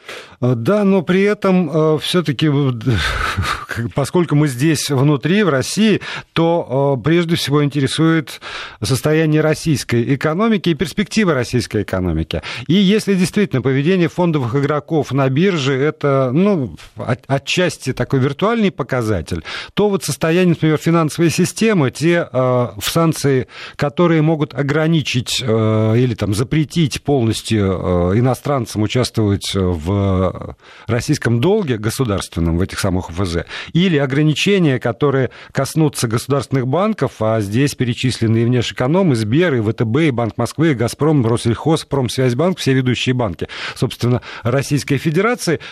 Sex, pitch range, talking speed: male, 120-165 Hz, 110 wpm